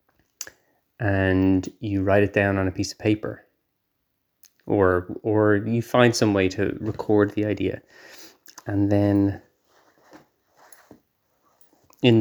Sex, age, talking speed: male, 20-39, 115 wpm